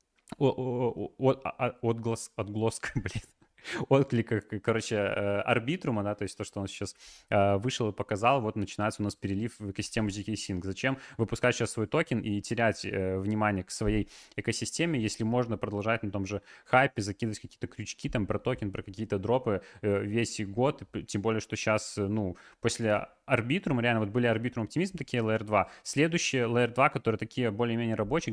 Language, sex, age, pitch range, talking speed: Russian, male, 20-39, 105-125 Hz, 160 wpm